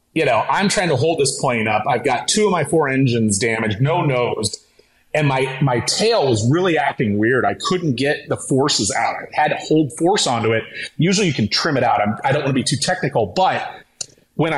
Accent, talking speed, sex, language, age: American, 230 wpm, male, English, 30-49